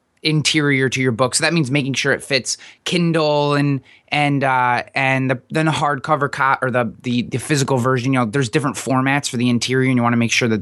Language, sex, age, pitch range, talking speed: English, male, 20-39, 120-155 Hz, 235 wpm